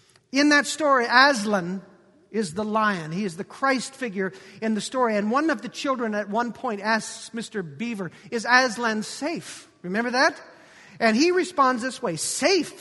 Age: 50-69